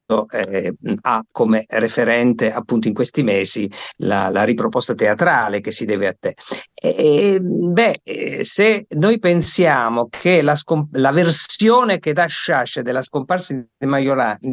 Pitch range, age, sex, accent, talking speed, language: 130-195 Hz, 50-69, male, native, 140 wpm, Italian